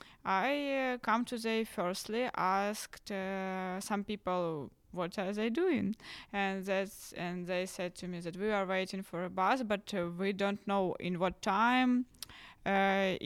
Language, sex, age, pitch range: Polish, female, 20-39, 185-215 Hz